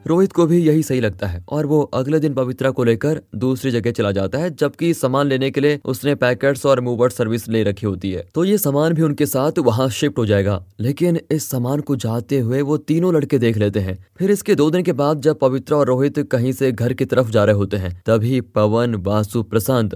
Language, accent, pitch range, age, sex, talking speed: Hindi, native, 115-145 Hz, 20-39, male, 235 wpm